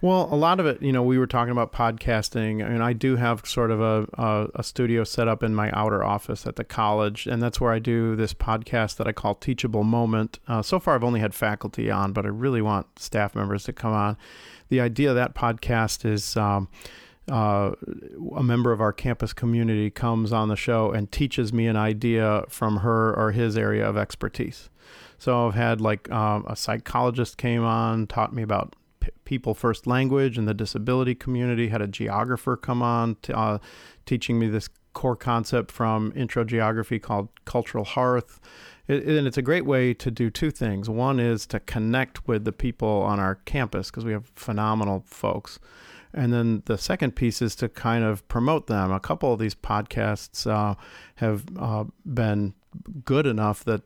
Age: 40-59